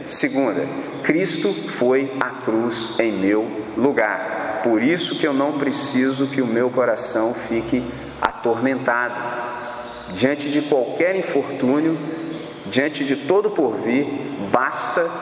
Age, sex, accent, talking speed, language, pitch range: 40-59, male, Brazilian, 120 wpm, Portuguese, 120-155 Hz